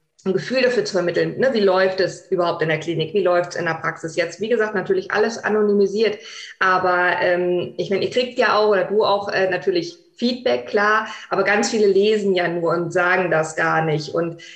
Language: German